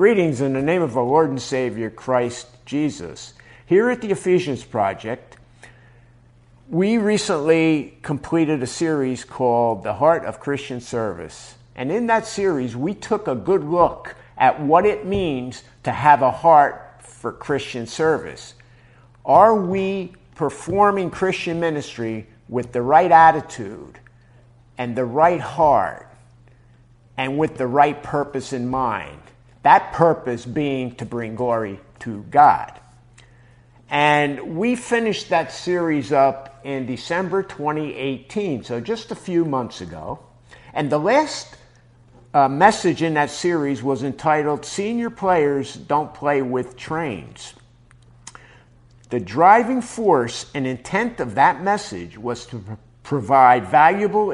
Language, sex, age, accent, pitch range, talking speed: English, male, 50-69, American, 120-165 Hz, 130 wpm